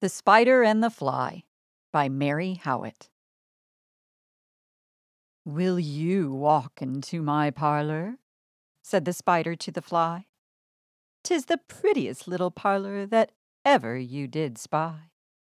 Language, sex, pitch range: English, female, 150-210 Hz